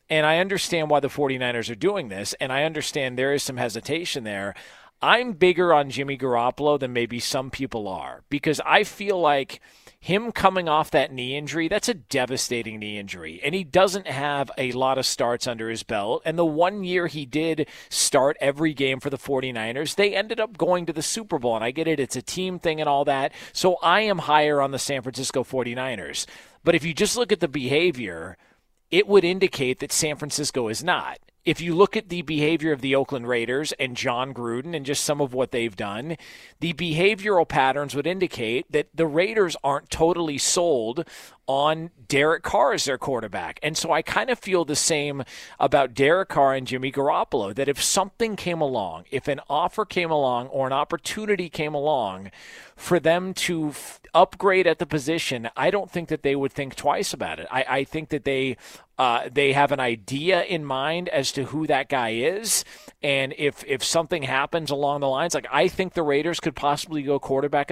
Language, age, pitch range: English, 40-59, 130-170 Hz